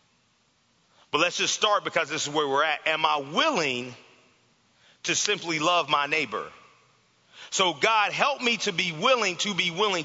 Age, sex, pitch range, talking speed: 40-59, male, 165-225 Hz, 165 wpm